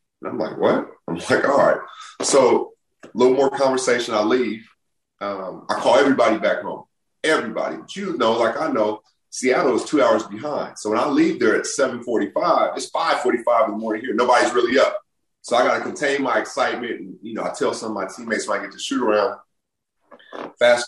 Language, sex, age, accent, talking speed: English, male, 30-49, American, 205 wpm